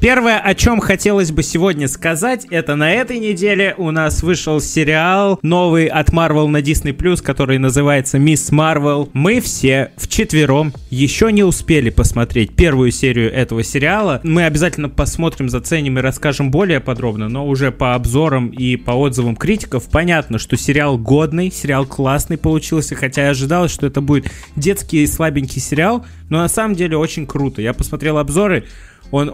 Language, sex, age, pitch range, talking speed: Russian, male, 20-39, 130-165 Hz, 160 wpm